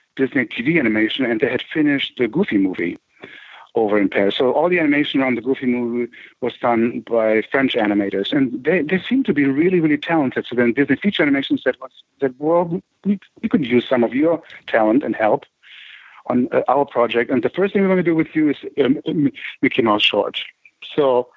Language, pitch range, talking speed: English, 120-175 Hz, 200 wpm